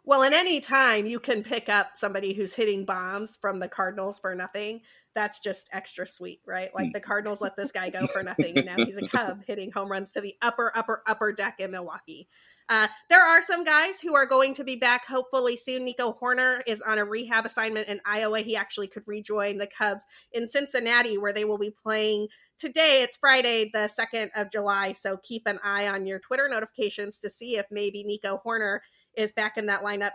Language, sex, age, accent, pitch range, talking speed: English, female, 30-49, American, 205-245 Hz, 215 wpm